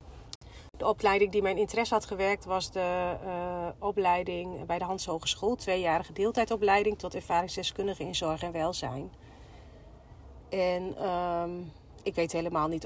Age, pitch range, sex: 40-59, 160-200 Hz, female